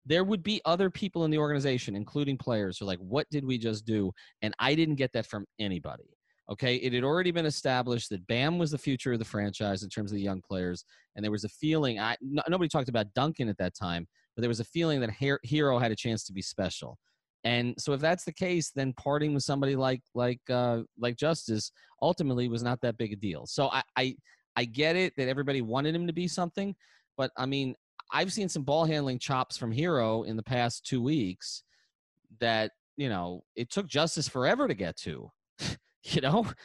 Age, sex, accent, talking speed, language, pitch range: 30-49, male, American, 220 wpm, English, 115-155 Hz